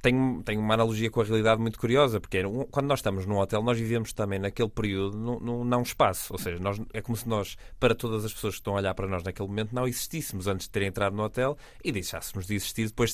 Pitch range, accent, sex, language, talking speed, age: 100-125 Hz, Portuguese, male, Portuguese, 270 wpm, 20-39